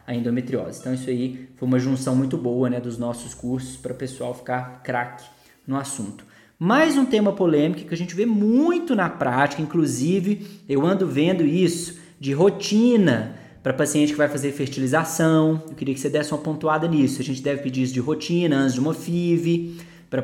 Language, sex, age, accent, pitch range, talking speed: Portuguese, male, 20-39, Brazilian, 130-190 Hz, 195 wpm